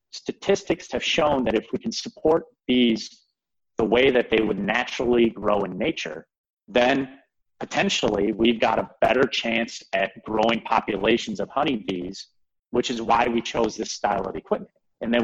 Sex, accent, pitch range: male, American, 105-135 Hz